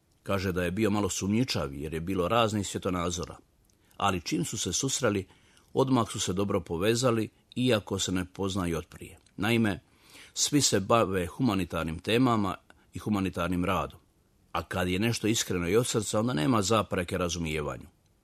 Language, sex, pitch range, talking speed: Croatian, male, 90-115 Hz, 160 wpm